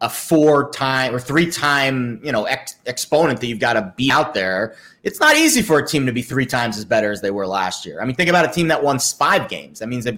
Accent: American